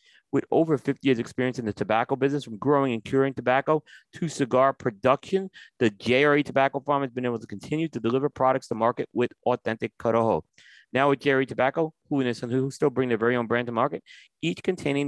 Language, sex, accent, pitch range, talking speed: English, male, American, 115-145 Hz, 195 wpm